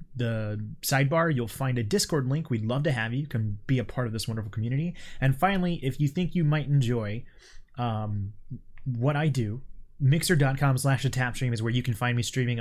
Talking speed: 210 wpm